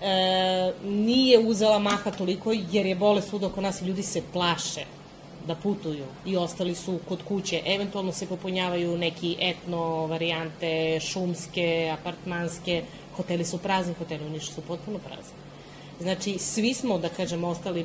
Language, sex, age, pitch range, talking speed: Croatian, female, 30-49, 170-195 Hz, 145 wpm